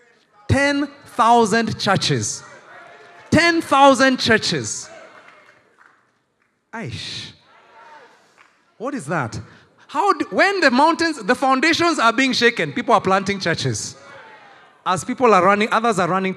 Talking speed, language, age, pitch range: 115 wpm, English, 30-49, 150-220 Hz